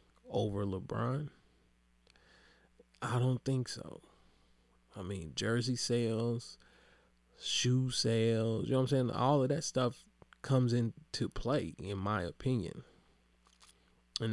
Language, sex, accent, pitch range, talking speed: English, male, American, 105-125 Hz, 115 wpm